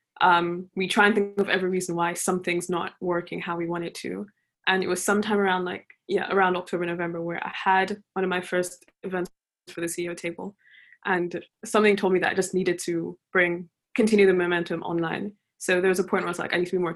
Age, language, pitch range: 20-39, English, 175-195 Hz